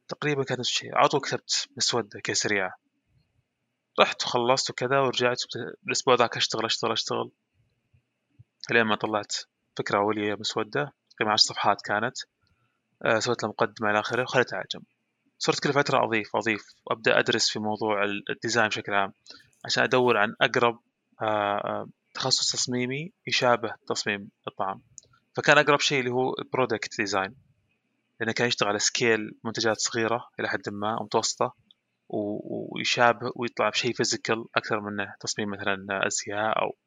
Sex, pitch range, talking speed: male, 105-125 Hz, 130 wpm